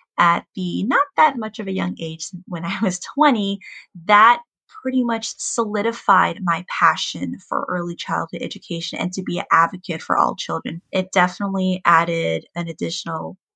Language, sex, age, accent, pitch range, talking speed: English, female, 10-29, American, 170-205 Hz, 160 wpm